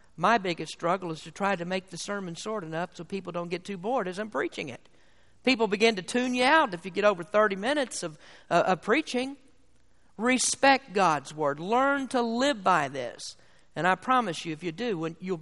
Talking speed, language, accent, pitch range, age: 210 wpm, English, American, 180-265 Hz, 50-69